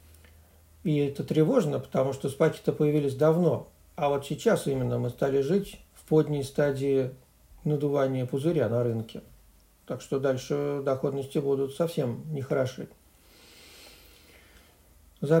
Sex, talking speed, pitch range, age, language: male, 115 wpm, 130-170 Hz, 50-69, Russian